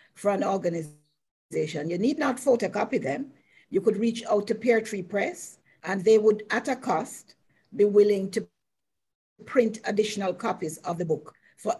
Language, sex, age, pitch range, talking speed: English, female, 50-69, 195-230 Hz, 165 wpm